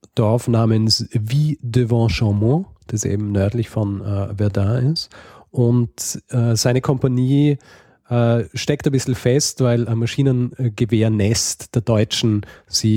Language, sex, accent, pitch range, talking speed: German, male, German, 100-125 Hz, 125 wpm